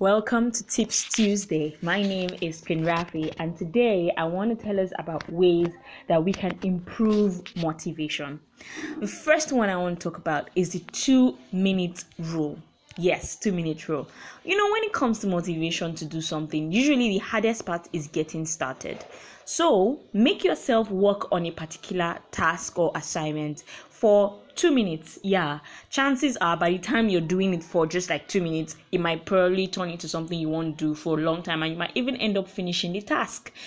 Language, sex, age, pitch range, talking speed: English, female, 10-29, 165-225 Hz, 185 wpm